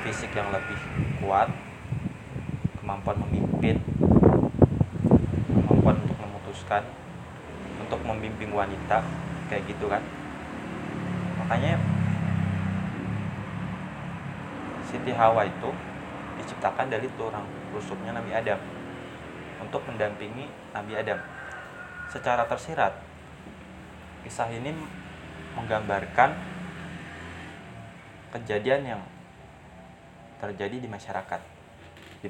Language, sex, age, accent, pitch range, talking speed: Indonesian, male, 20-39, native, 95-115 Hz, 75 wpm